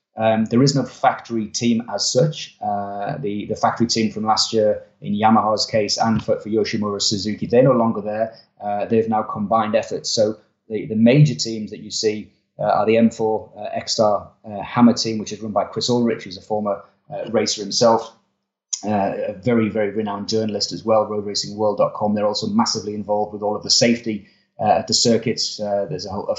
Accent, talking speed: British, 195 wpm